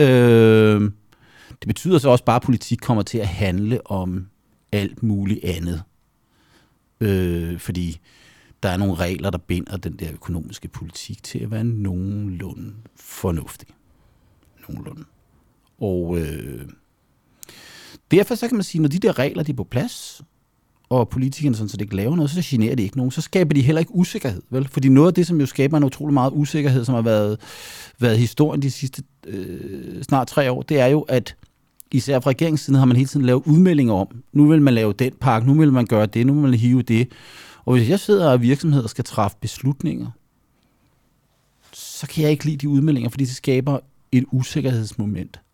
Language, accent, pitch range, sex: Danish, native, 100-140 Hz, male